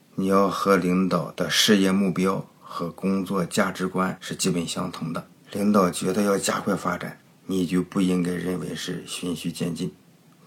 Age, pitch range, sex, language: 50-69, 85-95 Hz, male, Chinese